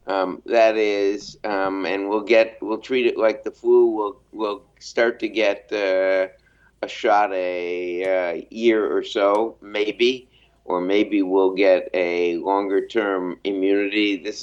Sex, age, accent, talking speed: male, 60-79, American, 150 wpm